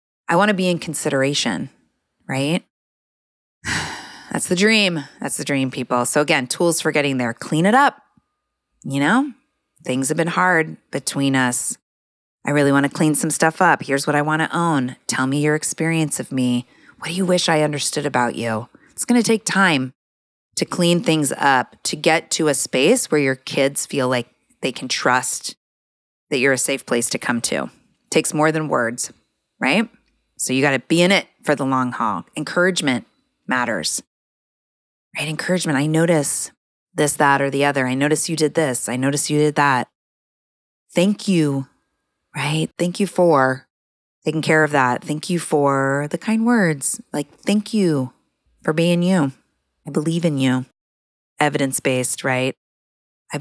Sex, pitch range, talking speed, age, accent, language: female, 130-165 Hz, 175 wpm, 30-49, American, English